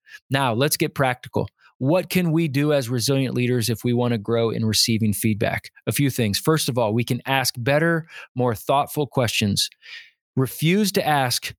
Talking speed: 180 wpm